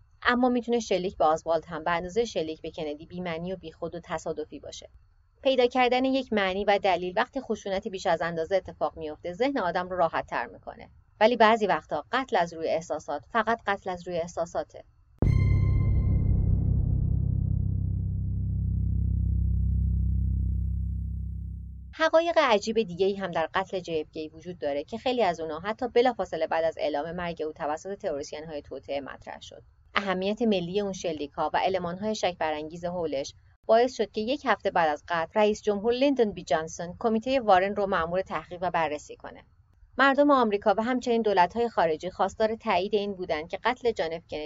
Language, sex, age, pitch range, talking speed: Persian, female, 30-49, 155-210 Hz, 155 wpm